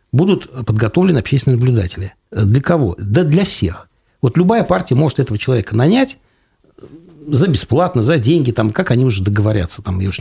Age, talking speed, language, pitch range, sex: 60-79, 165 wpm, Russian, 105-155 Hz, male